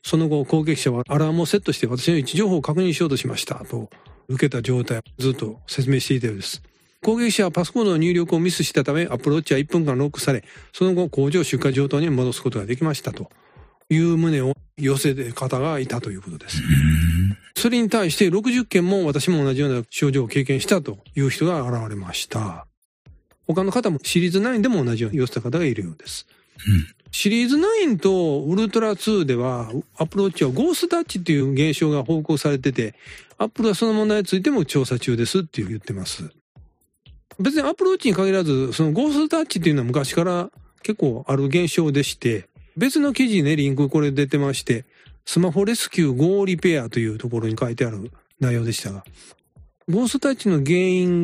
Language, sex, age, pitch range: Japanese, male, 40-59, 130-185 Hz